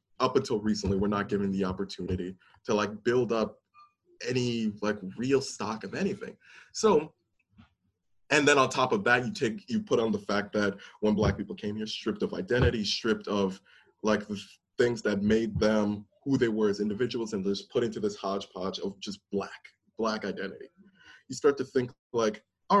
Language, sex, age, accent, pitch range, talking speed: English, male, 20-39, American, 105-150 Hz, 185 wpm